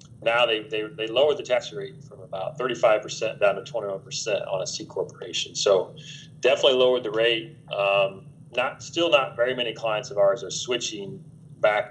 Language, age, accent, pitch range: English, 40-59, American, 120-160 Hz